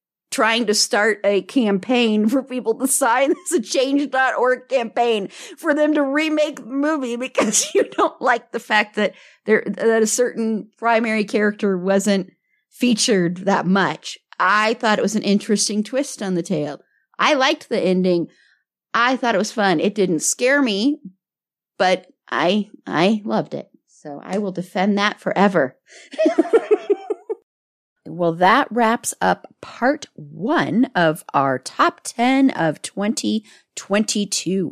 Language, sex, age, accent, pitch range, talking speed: English, female, 50-69, American, 190-265 Hz, 140 wpm